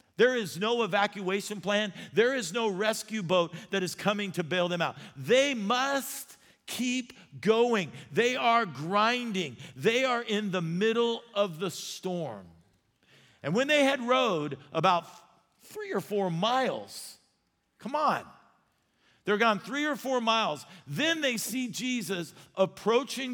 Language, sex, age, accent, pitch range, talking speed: English, male, 50-69, American, 180-240 Hz, 140 wpm